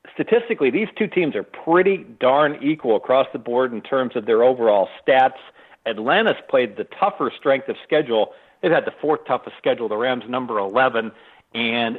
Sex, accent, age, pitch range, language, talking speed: male, American, 50-69, 120-160 Hz, English, 175 wpm